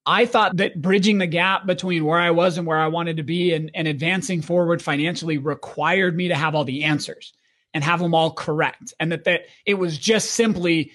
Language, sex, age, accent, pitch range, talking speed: English, male, 30-49, American, 160-195 Hz, 220 wpm